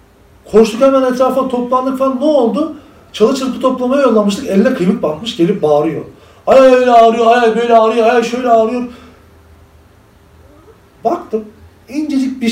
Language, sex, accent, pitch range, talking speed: Turkish, male, native, 145-245 Hz, 135 wpm